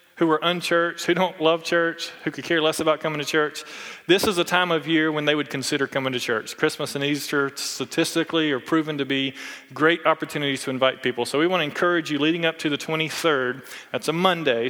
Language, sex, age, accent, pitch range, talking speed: English, male, 30-49, American, 135-165 Hz, 225 wpm